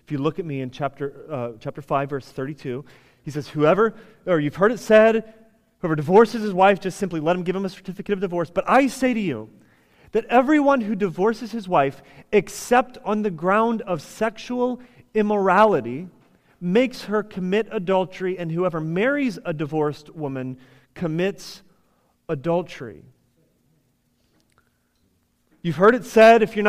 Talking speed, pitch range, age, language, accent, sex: 155 wpm, 160-225 Hz, 30-49, English, American, male